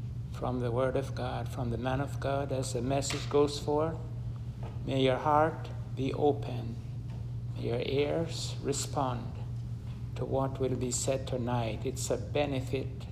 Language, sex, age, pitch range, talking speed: English, male, 60-79, 120-135 Hz, 150 wpm